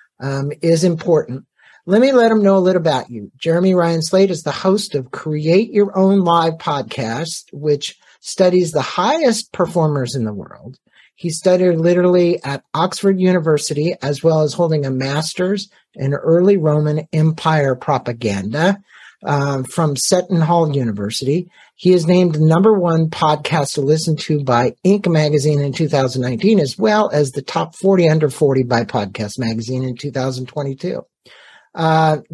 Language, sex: English, male